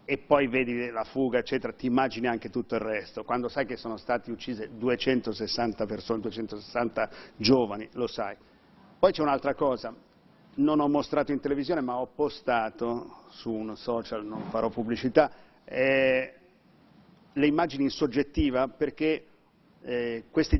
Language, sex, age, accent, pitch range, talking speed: Italian, male, 50-69, native, 120-145 Hz, 145 wpm